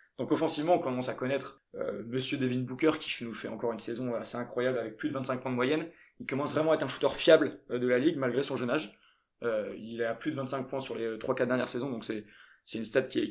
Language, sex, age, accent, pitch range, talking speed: French, male, 20-39, French, 120-150 Hz, 275 wpm